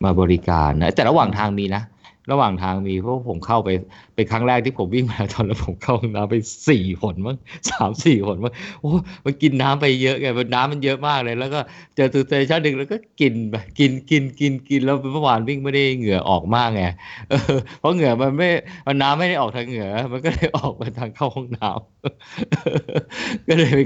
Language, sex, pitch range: Thai, male, 100-140 Hz